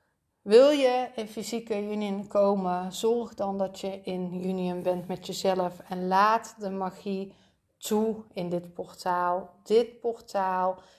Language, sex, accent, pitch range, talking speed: Dutch, female, Dutch, 185-215 Hz, 135 wpm